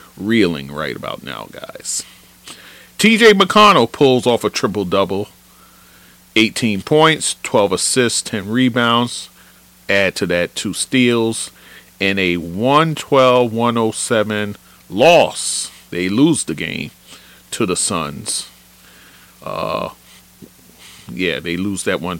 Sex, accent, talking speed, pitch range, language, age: male, American, 110 wpm, 85-130 Hz, English, 40-59